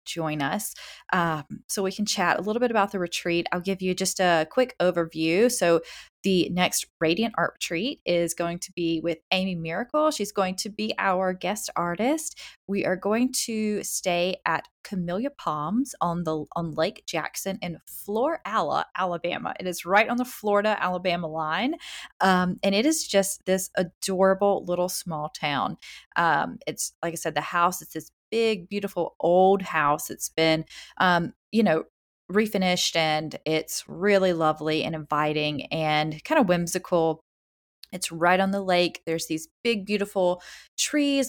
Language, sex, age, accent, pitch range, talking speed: English, female, 20-39, American, 160-205 Hz, 165 wpm